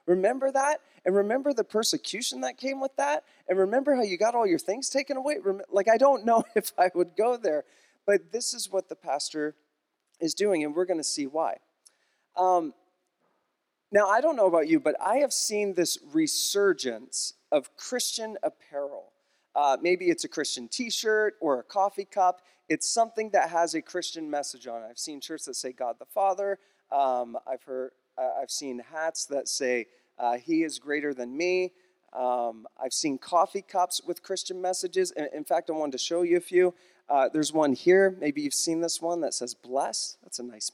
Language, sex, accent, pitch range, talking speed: English, male, American, 150-210 Hz, 195 wpm